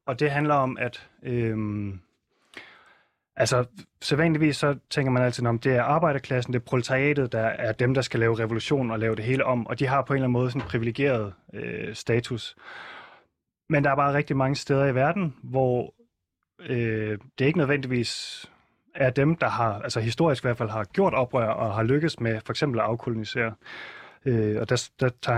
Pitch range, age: 110-140 Hz, 30-49